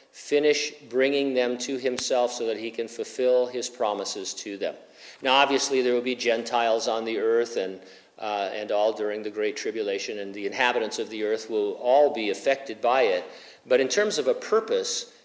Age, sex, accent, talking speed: 50-69, male, American, 195 wpm